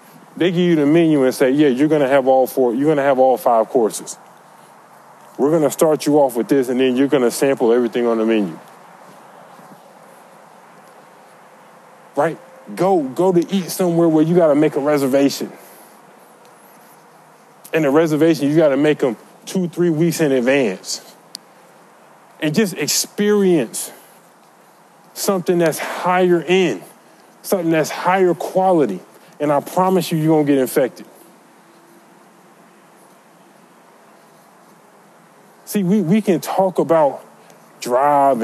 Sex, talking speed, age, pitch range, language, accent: male, 135 wpm, 20-39, 140-185 Hz, English, American